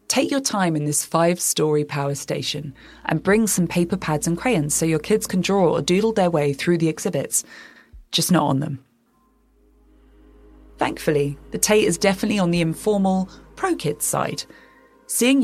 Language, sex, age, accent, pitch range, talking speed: English, female, 20-39, British, 145-205 Hz, 165 wpm